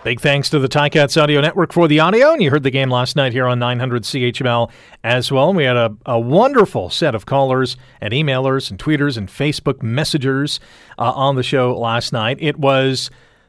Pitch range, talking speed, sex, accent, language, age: 120-165 Hz, 205 wpm, male, American, English, 40-59